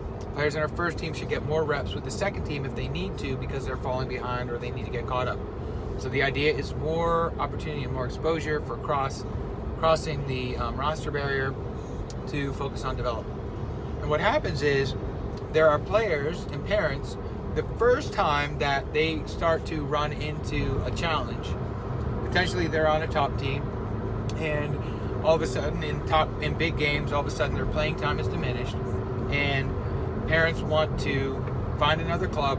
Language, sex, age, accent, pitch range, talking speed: English, male, 30-49, American, 110-145 Hz, 180 wpm